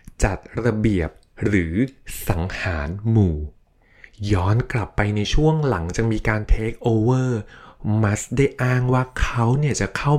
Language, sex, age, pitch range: Thai, male, 20-39, 100-130 Hz